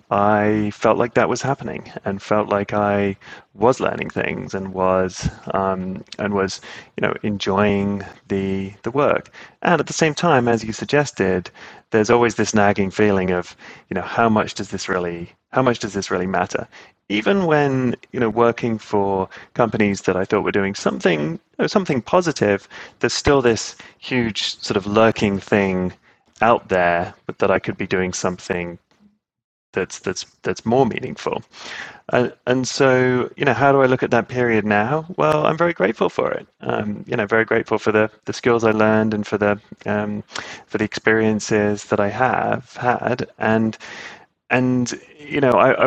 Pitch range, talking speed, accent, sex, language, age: 100-120 Hz, 180 wpm, British, male, English, 30-49